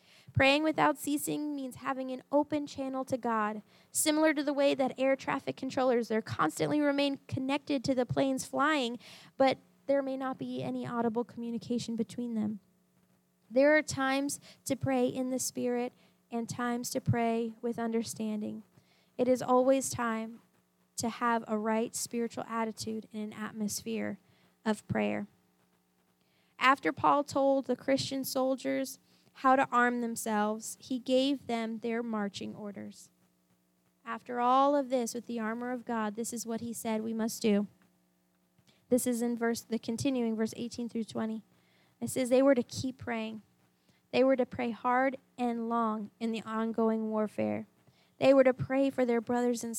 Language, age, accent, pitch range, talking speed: English, 10-29, American, 215-265 Hz, 160 wpm